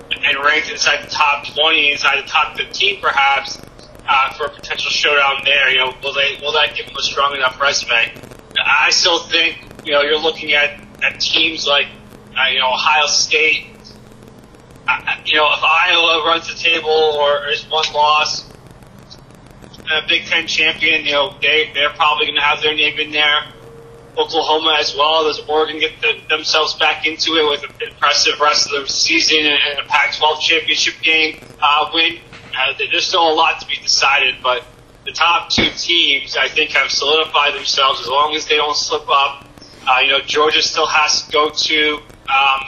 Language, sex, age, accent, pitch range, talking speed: English, male, 20-39, American, 140-155 Hz, 185 wpm